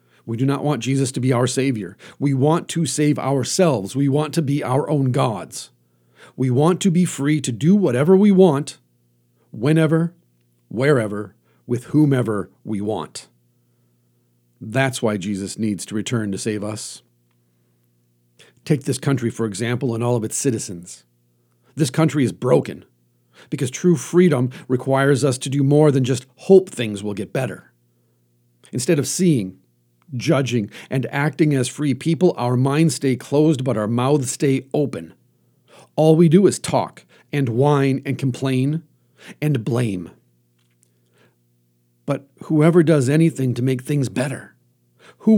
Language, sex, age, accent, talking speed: English, male, 40-59, American, 150 wpm